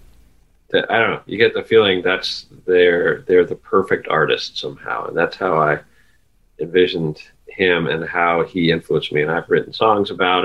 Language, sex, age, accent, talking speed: English, male, 40-59, American, 170 wpm